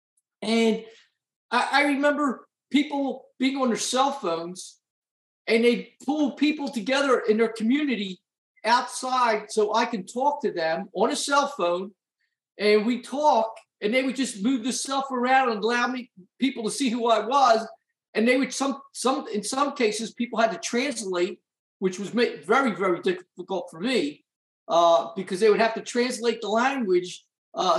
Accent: American